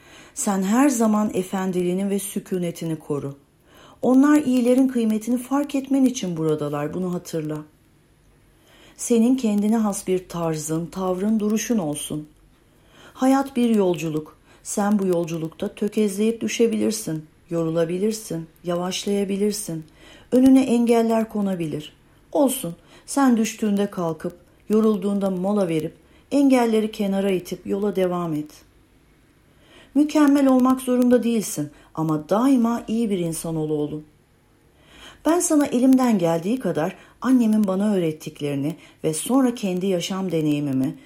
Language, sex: Turkish, female